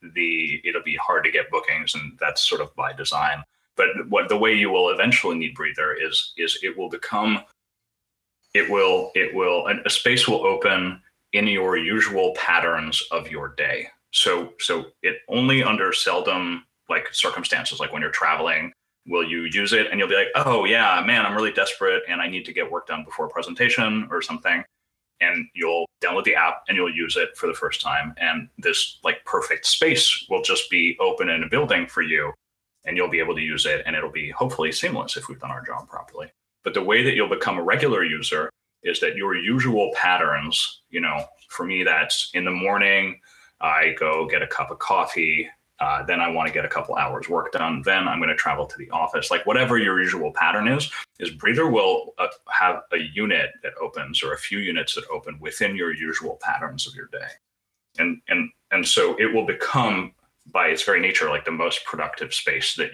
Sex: male